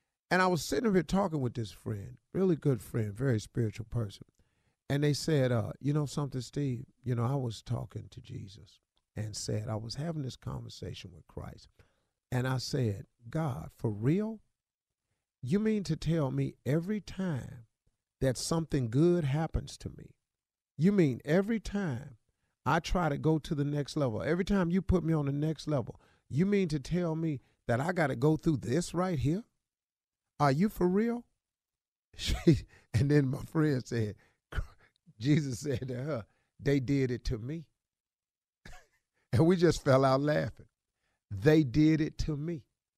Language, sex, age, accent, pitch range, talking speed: English, male, 50-69, American, 125-170 Hz, 170 wpm